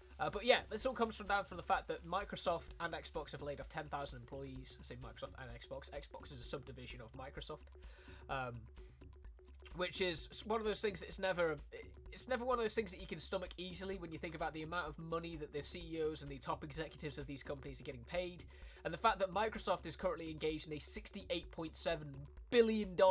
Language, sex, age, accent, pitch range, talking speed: Italian, male, 20-39, British, 125-180 Hz, 220 wpm